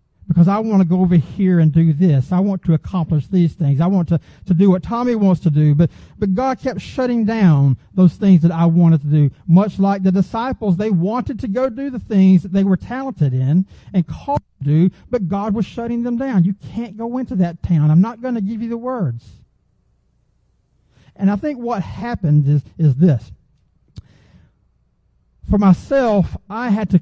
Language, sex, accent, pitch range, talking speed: English, male, American, 155-205 Hz, 205 wpm